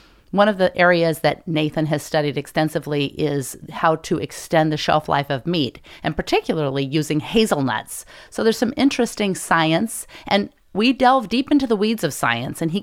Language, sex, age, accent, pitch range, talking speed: English, female, 40-59, American, 145-180 Hz, 180 wpm